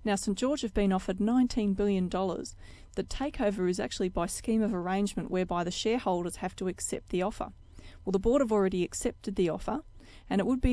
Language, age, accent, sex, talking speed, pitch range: English, 30-49, Australian, female, 200 wpm, 180-210 Hz